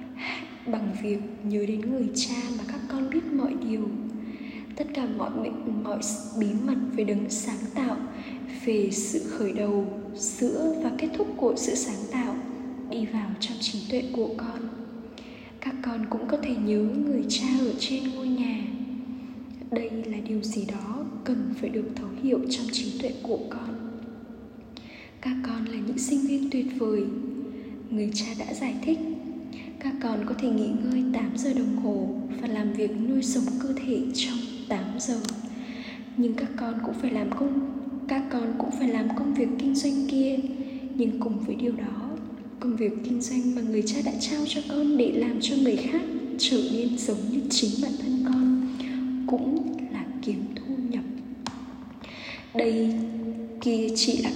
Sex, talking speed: female, 170 wpm